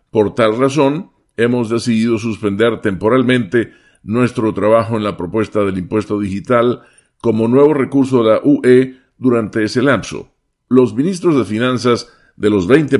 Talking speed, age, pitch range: 145 wpm, 50-69, 105-125 Hz